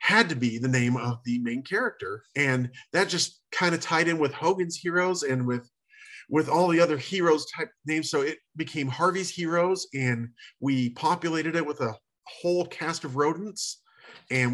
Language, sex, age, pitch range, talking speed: English, male, 40-59, 125-160 Hz, 180 wpm